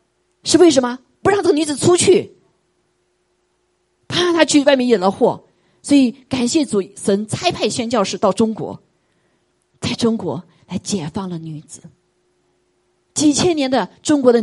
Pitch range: 170-270 Hz